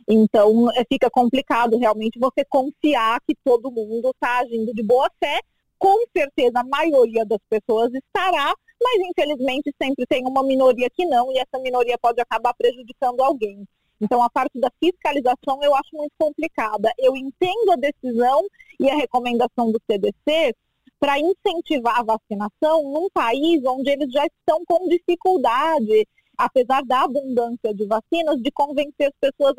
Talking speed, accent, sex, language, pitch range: 150 wpm, Brazilian, female, Portuguese, 230-310 Hz